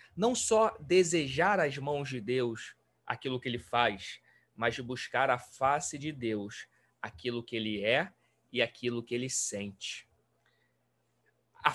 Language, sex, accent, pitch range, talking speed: Portuguese, male, Brazilian, 120-180 Hz, 140 wpm